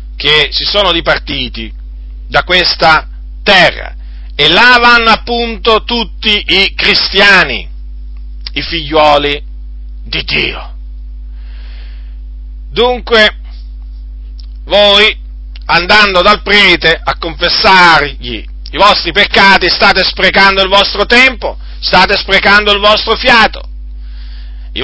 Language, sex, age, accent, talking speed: Italian, male, 50-69, native, 95 wpm